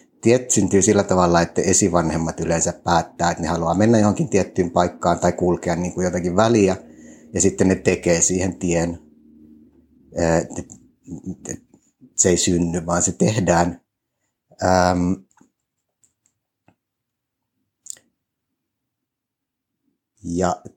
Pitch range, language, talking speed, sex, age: 85-100 Hz, Finnish, 100 wpm, male, 60-79